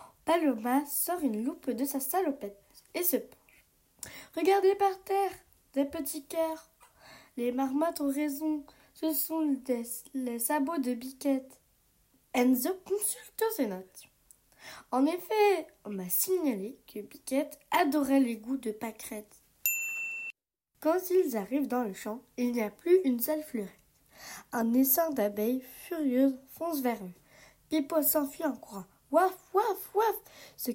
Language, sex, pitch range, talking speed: French, female, 230-320 Hz, 135 wpm